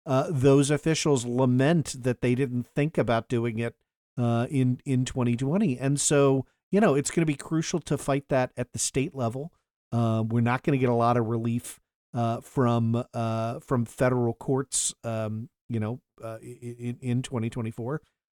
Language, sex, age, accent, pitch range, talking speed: English, male, 50-69, American, 120-160 Hz, 170 wpm